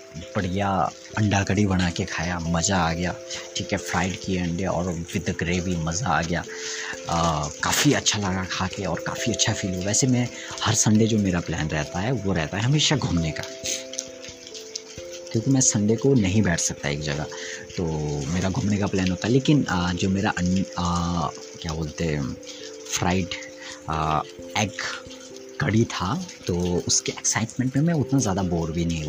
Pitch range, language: 85-115 Hz, Hindi